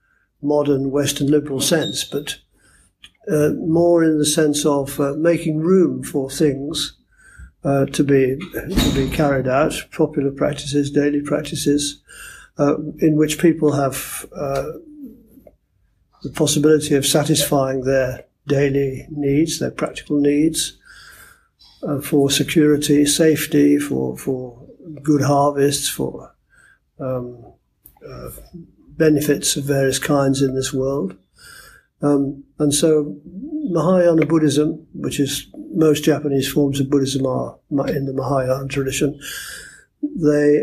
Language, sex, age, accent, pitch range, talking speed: English, male, 50-69, British, 140-155 Hz, 115 wpm